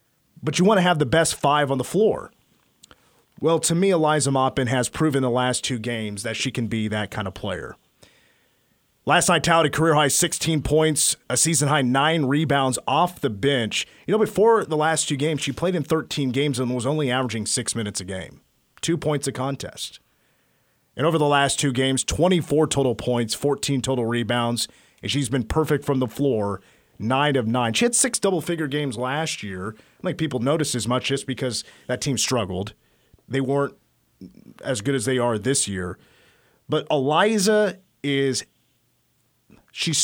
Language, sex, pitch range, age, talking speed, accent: English, male, 125-155 Hz, 30-49, 180 wpm, American